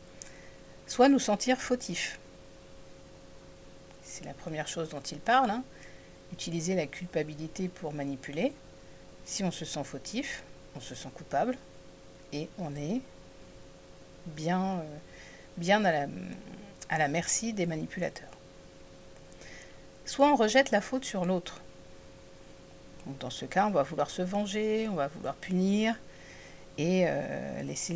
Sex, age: female, 50-69